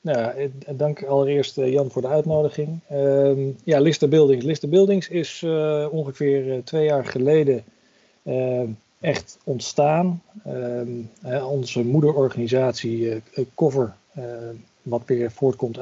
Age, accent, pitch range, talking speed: 40-59, Dutch, 120-140 Hz, 120 wpm